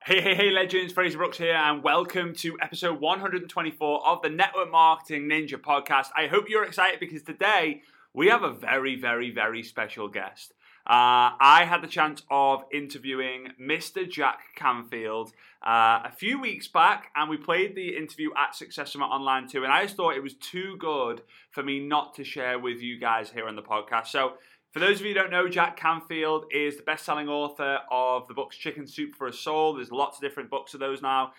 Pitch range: 135-170 Hz